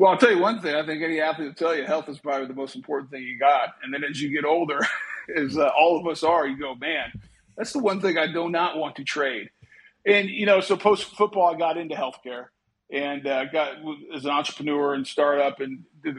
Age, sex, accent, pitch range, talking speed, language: 40-59, male, American, 140-170 Hz, 250 wpm, English